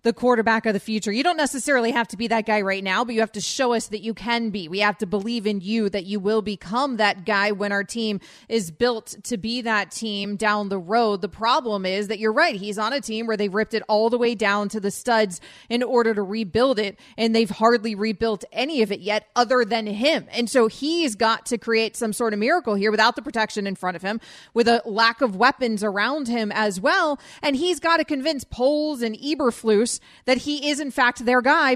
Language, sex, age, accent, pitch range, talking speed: English, female, 20-39, American, 215-260 Hz, 240 wpm